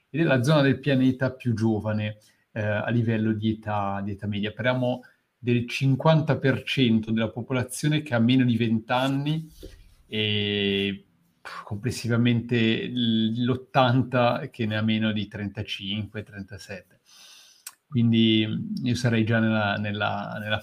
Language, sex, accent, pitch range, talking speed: Italian, male, native, 110-130 Hz, 120 wpm